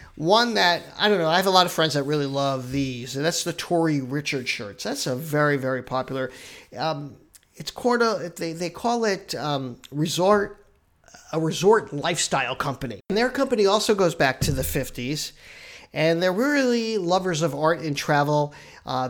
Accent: American